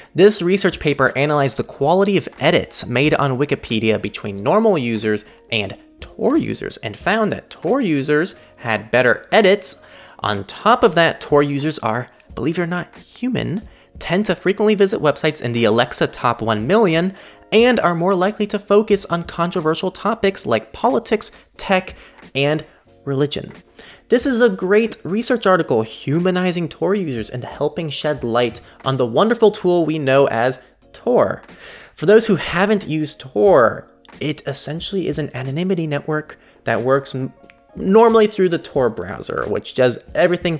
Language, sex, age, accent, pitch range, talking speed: English, male, 20-39, American, 120-190 Hz, 155 wpm